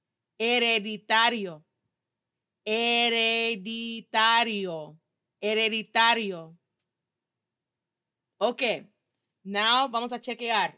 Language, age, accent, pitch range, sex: English, 30-49, American, 195-250 Hz, female